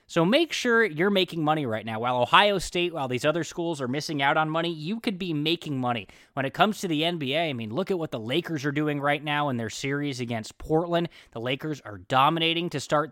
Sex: male